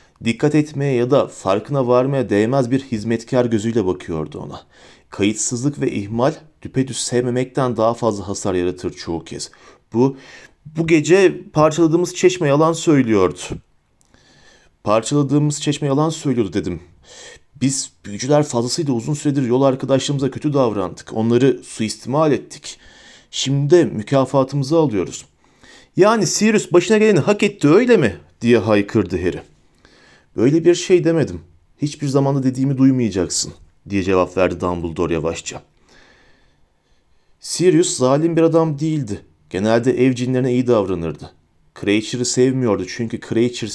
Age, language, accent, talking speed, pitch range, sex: 40-59, Turkish, native, 120 wpm, 105-145 Hz, male